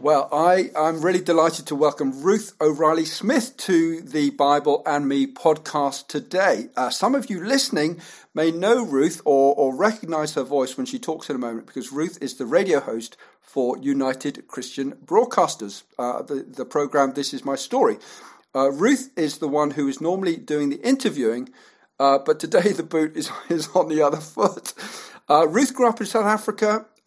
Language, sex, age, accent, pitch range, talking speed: English, male, 50-69, British, 145-205 Hz, 180 wpm